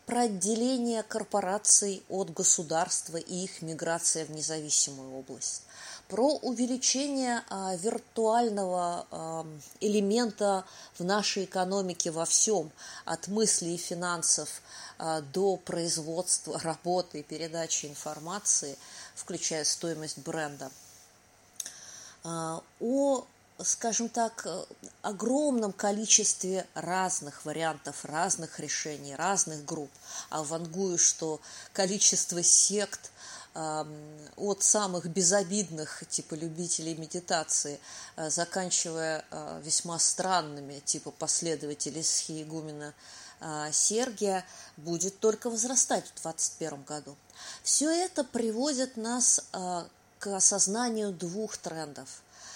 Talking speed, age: 90 wpm, 20-39